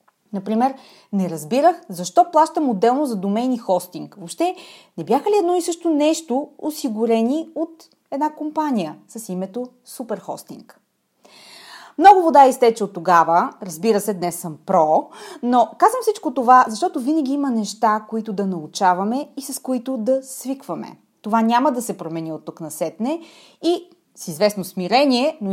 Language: Bulgarian